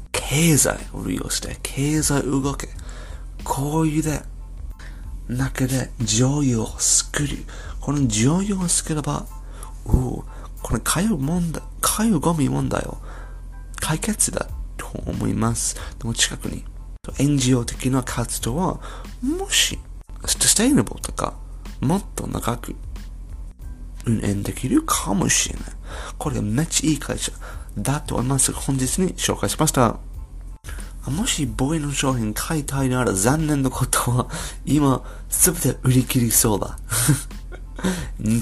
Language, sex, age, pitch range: Japanese, male, 30-49, 110-150 Hz